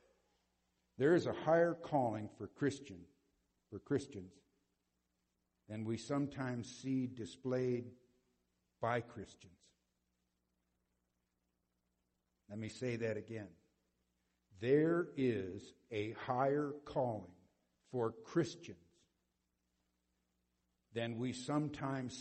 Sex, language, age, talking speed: male, English, 60-79, 80 wpm